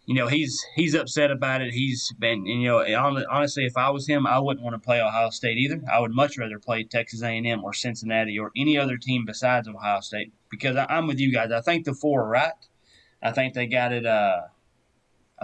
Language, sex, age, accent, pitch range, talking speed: English, male, 30-49, American, 115-135 Hz, 225 wpm